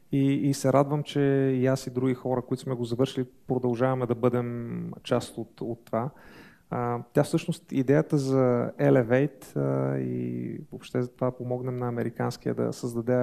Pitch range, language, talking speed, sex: 120-135 Hz, Bulgarian, 160 wpm, male